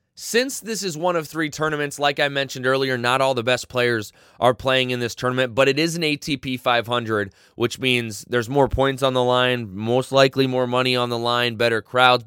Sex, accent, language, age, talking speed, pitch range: male, American, English, 20-39, 215 wpm, 110-130 Hz